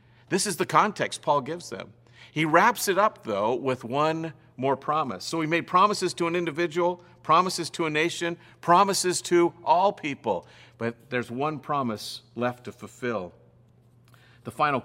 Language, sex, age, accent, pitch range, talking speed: English, male, 50-69, American, 115-145 Hz, 160 wpm